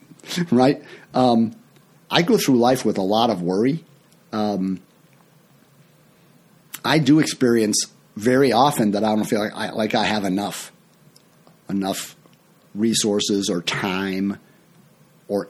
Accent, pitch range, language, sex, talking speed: American, 100-140 Hz, English, male, 125 wpm